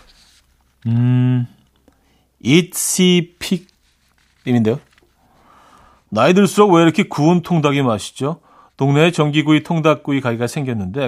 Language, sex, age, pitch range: Korean, male, 40-59, 105-155 Hz